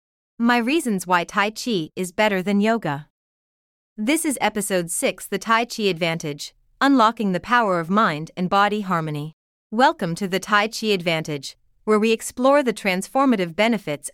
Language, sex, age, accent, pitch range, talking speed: English, female, 30-49, American, 180-230 Hz, 155 wpm